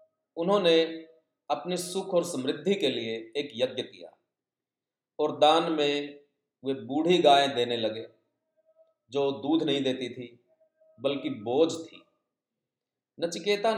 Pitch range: 140-175 Hz